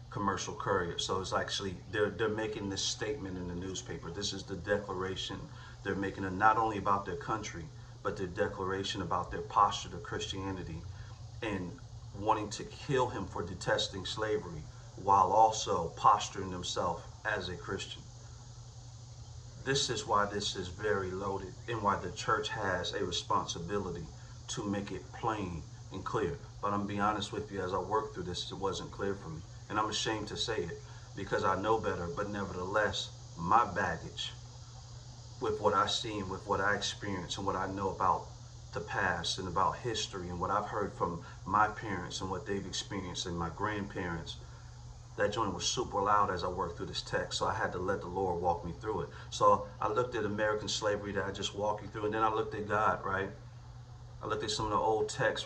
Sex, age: male, 40-59